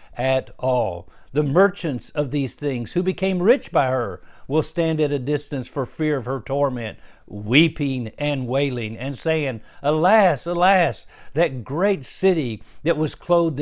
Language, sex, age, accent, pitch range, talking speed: English, male, 50-69, American, 130-170 Hz, 155 wpm